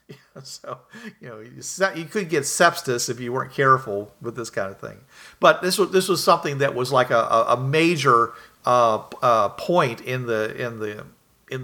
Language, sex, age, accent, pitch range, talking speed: English, male, 50-69, American, 120-145 Hz, 185 wpm